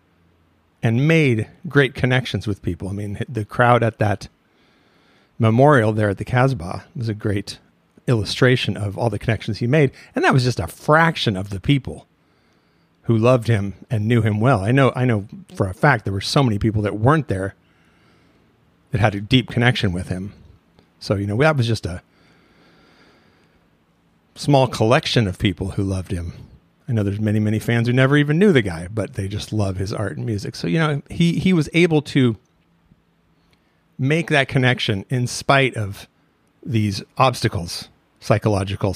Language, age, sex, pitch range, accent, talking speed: English, 40-59, male, 100-130 Hz, American, 180 wpm